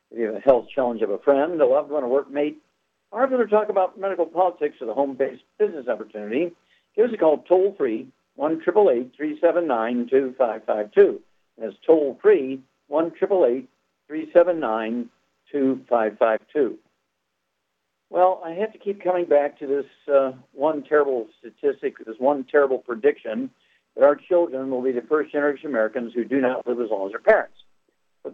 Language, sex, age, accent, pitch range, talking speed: English, male, 60-79, American, 125-180 Hz, 155 wpm